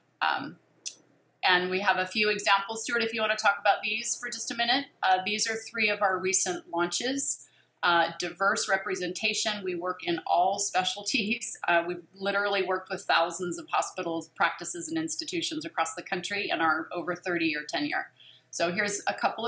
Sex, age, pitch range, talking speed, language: female, 30-49, 175-205 Hz, 180 wpm, English